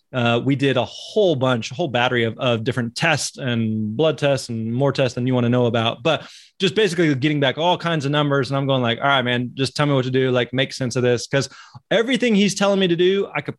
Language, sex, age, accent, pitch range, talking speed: English, male, 20-39, American, 125-155 Hz, 270 wpm